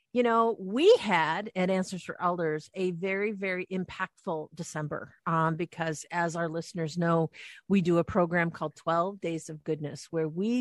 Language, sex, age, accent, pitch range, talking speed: English, female, 50-69, American, 170-210 Hz, 170 wpm